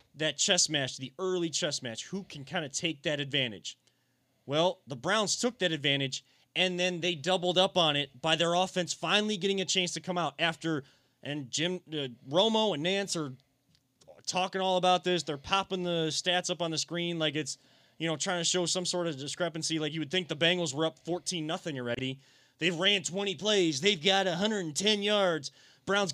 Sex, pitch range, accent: male, 150-195 Hz, American